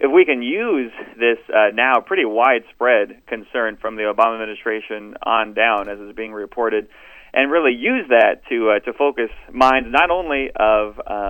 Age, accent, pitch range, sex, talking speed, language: 30-49, American, 110-135 Hz, male, 170 wpm, English